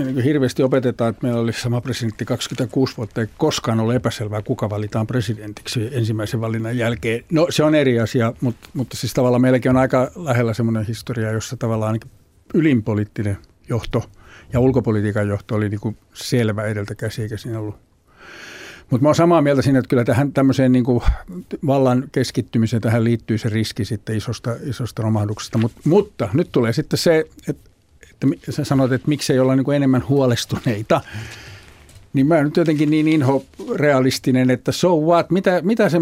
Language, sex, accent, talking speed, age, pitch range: Finnish, male, native, 160 wpm, 60-79, 115-145 Hz